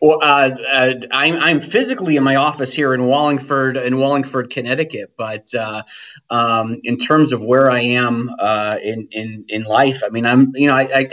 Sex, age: male, 30-49